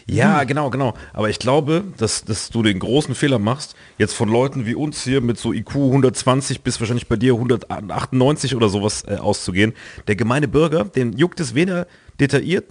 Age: 40-59